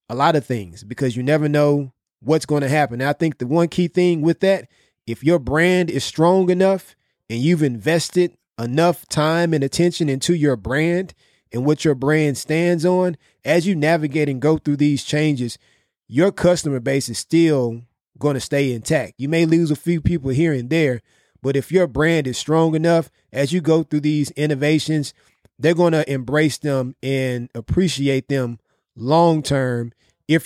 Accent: American